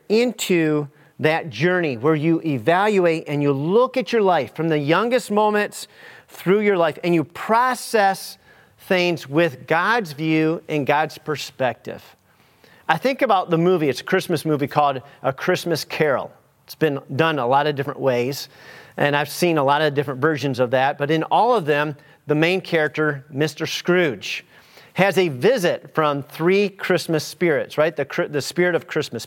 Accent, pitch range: American, 150-190 Hz